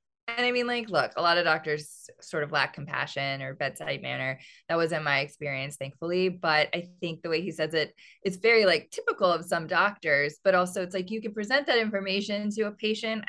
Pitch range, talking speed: 155-215 Hz, 215 wpm